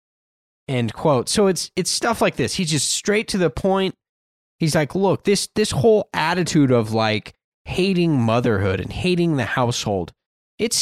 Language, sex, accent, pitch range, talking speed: English, male, American, 120-180 Hz, 165 wpm